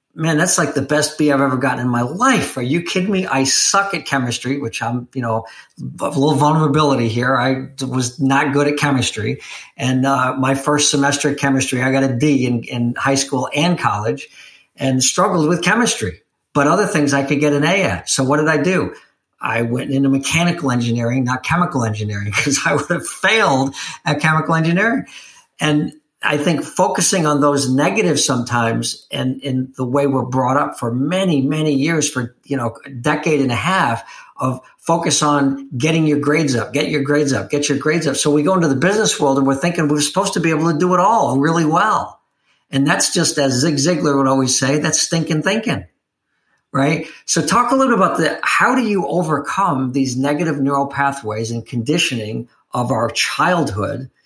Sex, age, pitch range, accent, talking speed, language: male, 50-69, 130-155 Hz, American, 200 wpm, English